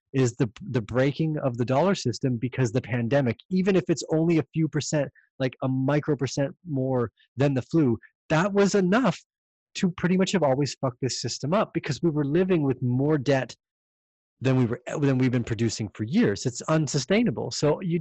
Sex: male